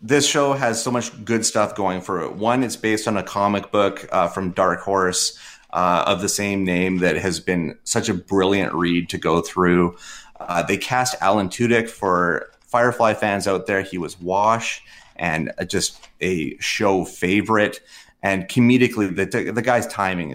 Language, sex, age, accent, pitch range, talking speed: English, male, 30-49, American, 90-110 Hz, 175 wpm